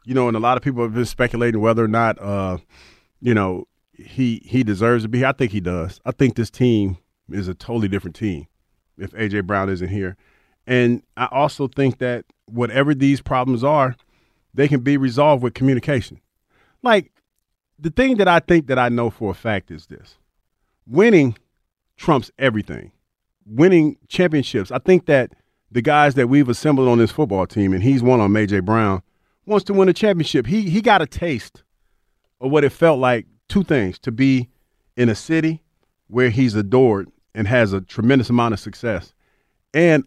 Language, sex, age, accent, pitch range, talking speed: English, male, 40-59, American, 105-140 Hz, 185 wpm